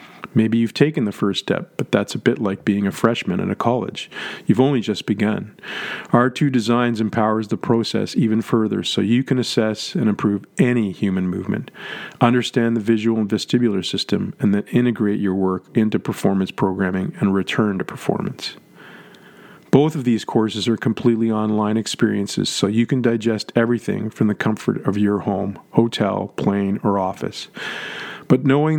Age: 40-59